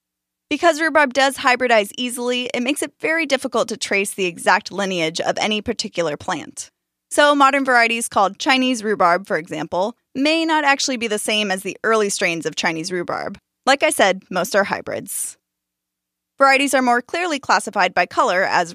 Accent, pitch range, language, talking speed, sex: American, 195-270 Hz, English, 175 wpm, female